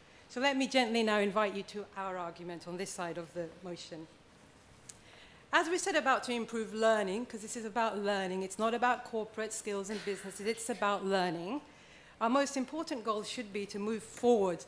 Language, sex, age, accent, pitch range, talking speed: English, female, 40-59, British, 195-245 Hz, 190 wpm